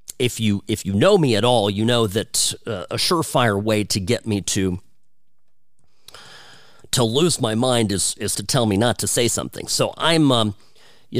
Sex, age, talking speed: male, 40-59, 195 wpm